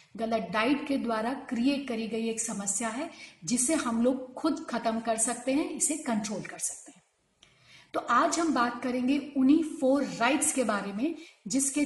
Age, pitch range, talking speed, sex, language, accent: 40-59, 225-275 Hz, 175 wpm, female, Hindi, native